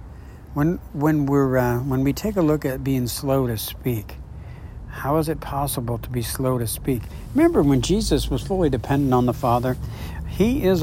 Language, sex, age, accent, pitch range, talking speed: English, male, 60-79, American, 120-150 Hz, 190 wpm